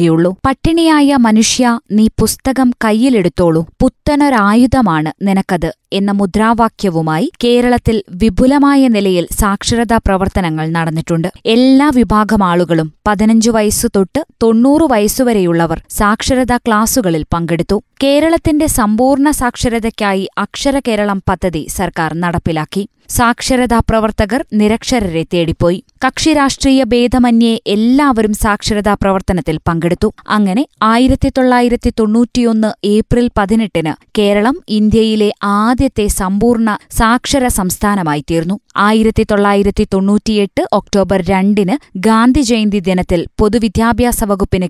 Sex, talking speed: female, 80 wpm